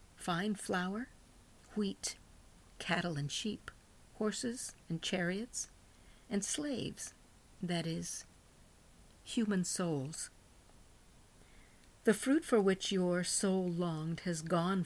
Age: 50-69